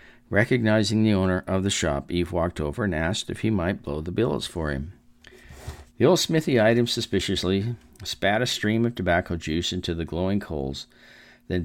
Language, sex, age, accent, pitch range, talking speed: English, male, 50-69, American, 85-115 Hz, 185 wpm